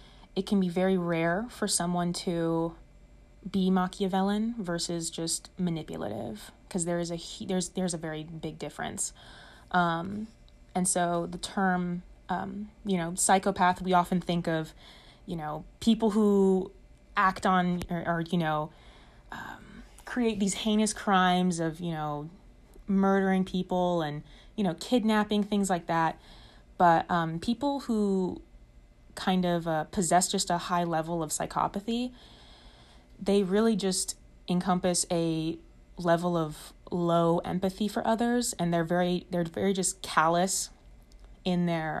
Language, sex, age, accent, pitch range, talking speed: English, female, 20-39, American, 170-195 Hz, 140 wpm